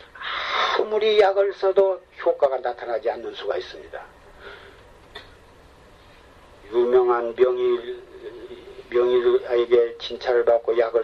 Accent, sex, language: native, male, Korean